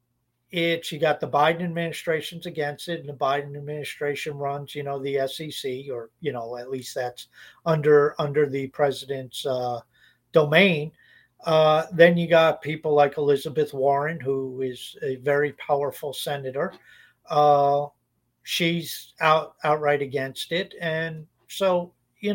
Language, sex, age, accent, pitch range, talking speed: English, male, 50-69, American, 140-170 Hz, 140 wpm